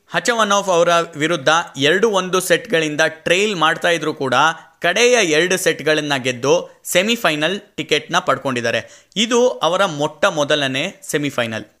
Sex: male